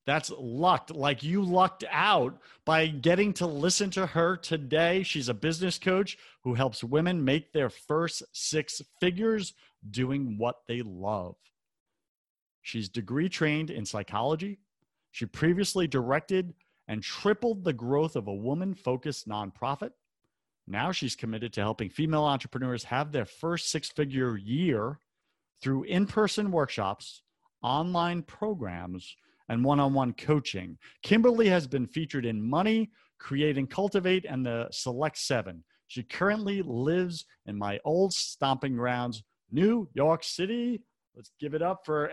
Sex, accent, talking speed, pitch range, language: male, American, 135 wpm, 125-180 Hz, English